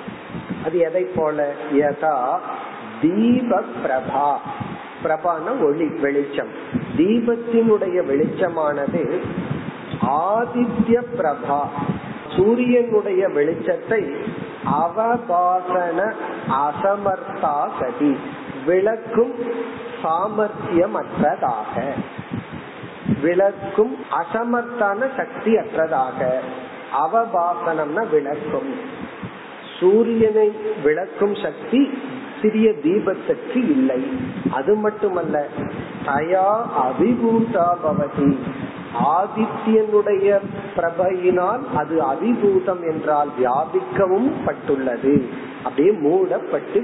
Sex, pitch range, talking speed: male, 170-230 Hz, 45 wpm